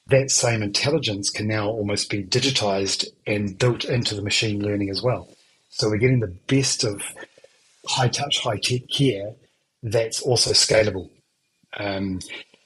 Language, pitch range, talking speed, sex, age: English, 105-125 Hz, 135 wpm, male, 30-49